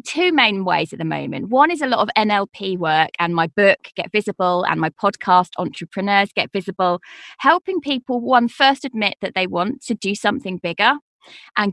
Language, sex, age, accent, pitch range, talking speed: English, female, 20-39, British, 190-250 Hz, 190 wpm